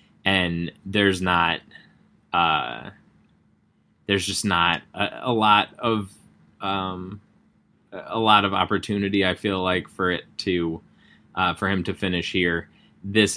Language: English